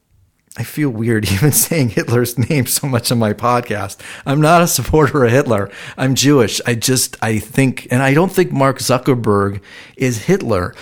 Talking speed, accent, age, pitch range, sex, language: 175 wpm, American, 40-59, 110-135 Hz, male, English